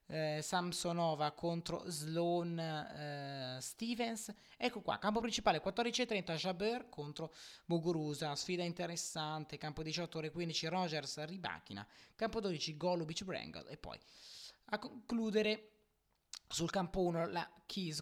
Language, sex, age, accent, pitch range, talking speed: Italian, male, 20-39, native, 145-210 Hz, 105 wpm